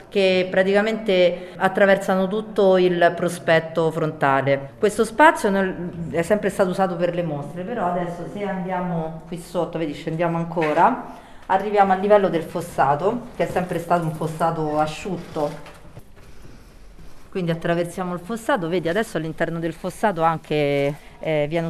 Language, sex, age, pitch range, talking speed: Italian, female, 40-59, 155-185 Hz, 135 wpm